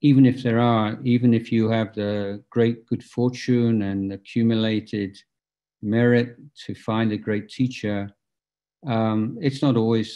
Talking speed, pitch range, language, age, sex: 140 wpm, 100-120 Hz, English, 50-69, male